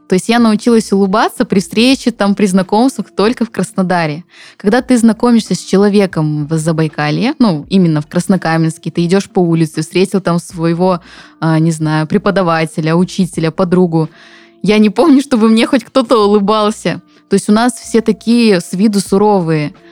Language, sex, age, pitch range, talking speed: Russian, female, 20-39, 175-220 Hz, 160 wpm